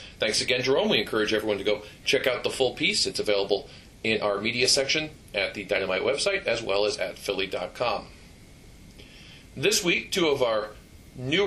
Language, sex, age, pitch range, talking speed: English, male, 40-59, 105-135 Hz, 180 wpm